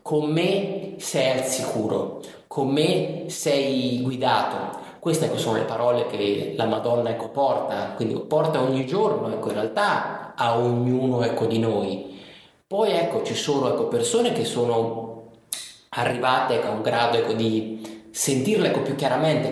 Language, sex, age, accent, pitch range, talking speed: Italian, male, 30-49, native, 115-170 Hz, 150 wpm